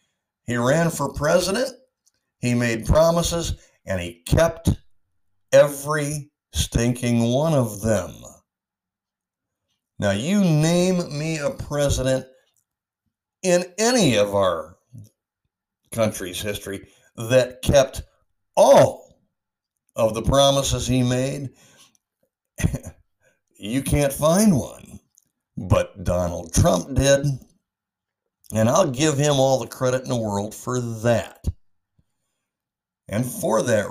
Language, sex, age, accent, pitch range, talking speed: English, male, 60-79, American, 100-140 Hz, 105 wpm